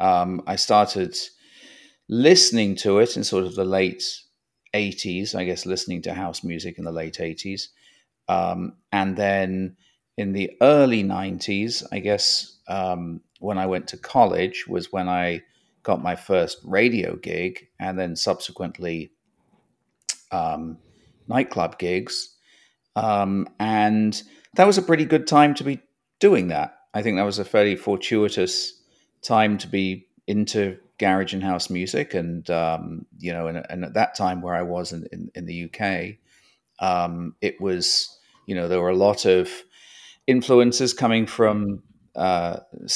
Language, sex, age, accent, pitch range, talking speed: English, male, 40-59, British, 90-105 Hz, 150 wpm